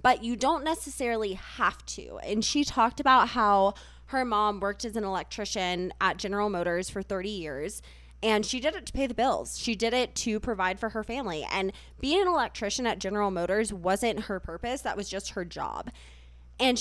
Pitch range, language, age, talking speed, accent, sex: 190-235 Hz, English, 20-39, 195 wpm, American, female